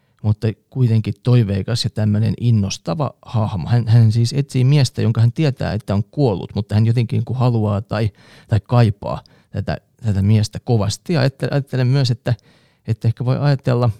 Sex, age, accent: male, 30-49, native